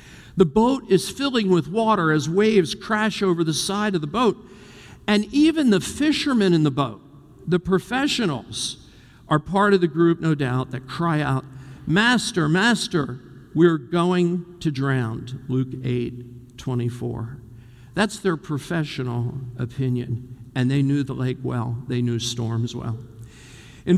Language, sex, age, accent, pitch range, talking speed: English, male, 50-69, American, 130-195 Hz, 150 wpm